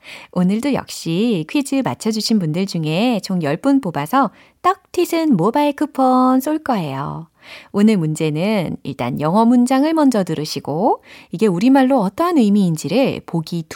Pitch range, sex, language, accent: 175-295 Hz, female, Korean, native